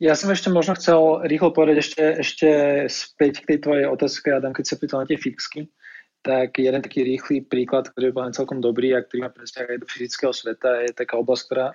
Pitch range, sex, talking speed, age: 120-130 Hz, male, 220 wpm, 20-39